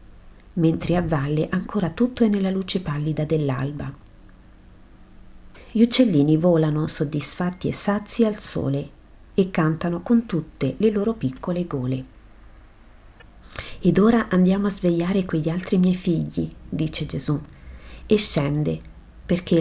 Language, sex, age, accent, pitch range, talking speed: Italian, female, 40-59, native, 140-190 Hz, 120 wpm